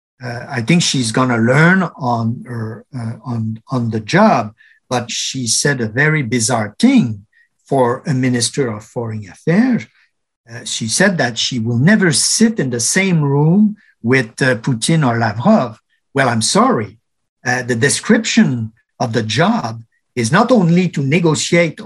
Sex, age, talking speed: male, 50-69, 160 wpm